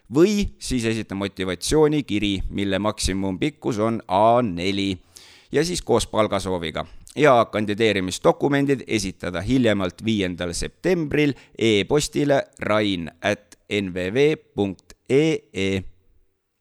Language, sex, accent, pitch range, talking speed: English, male, Finnish, 95-120 Hz, 85 wpm